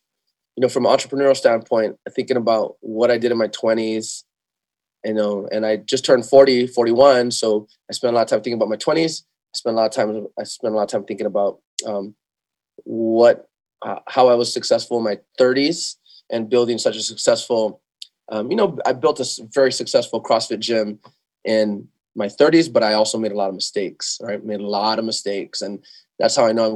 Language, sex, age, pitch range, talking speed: English, male, 20-39, 110-125 Hz, 215 wpm